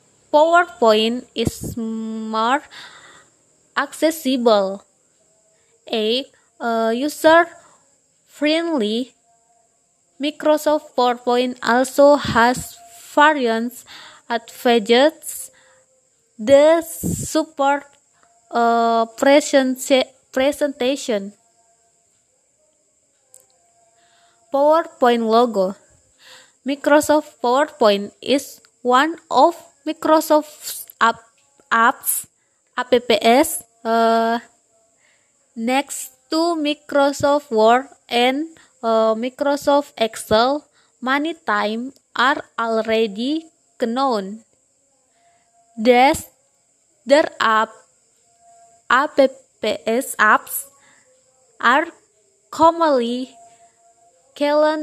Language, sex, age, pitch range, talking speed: Indonesian, female, 20-39, 230-295 Hz, 55 wpm